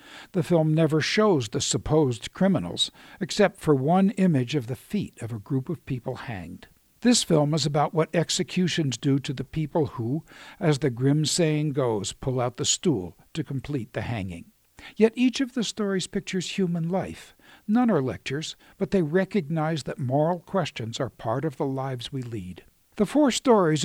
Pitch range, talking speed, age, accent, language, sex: 130-185 Hz, 180 wpm, 60-79, American, English, male